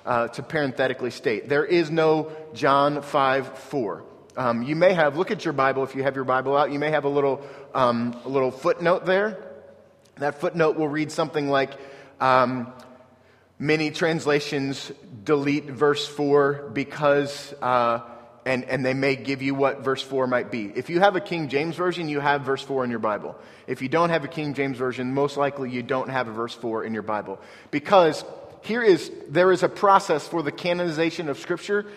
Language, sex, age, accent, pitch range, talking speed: English, male, 30-49, American, 135-165 Hz, 195 wpm